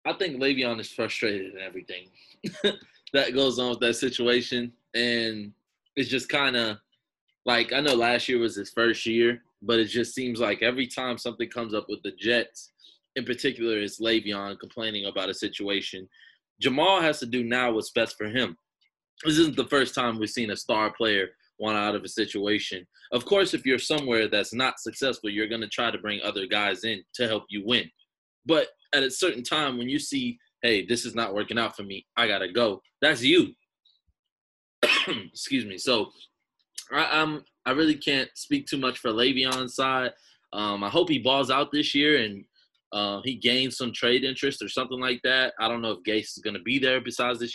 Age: 20-39